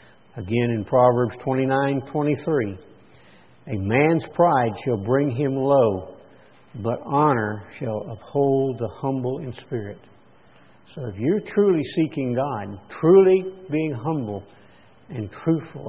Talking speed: 115 wpm